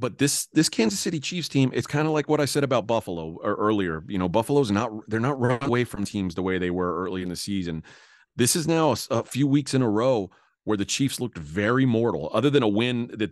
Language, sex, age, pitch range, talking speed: English, male, 30-49, 100-125 Hz, 255 wpm